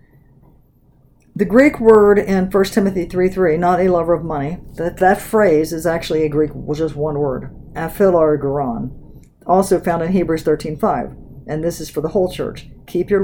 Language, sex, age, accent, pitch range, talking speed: English, female, 50-69, American, 145-190 Hz, 165 wpm